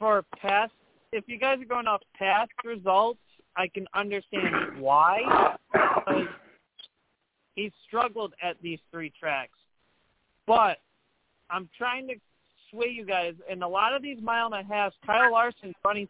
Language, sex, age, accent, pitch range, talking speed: English, male, 40-59, American, 190-230 Hz, 145 wpm